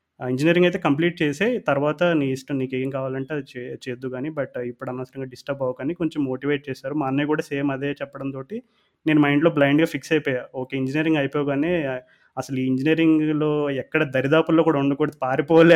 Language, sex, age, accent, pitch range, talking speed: Telugu, male, 20-39, native, 135-155 Hz, 170 wpm